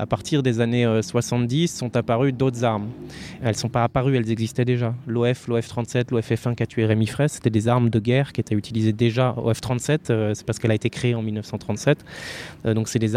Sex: male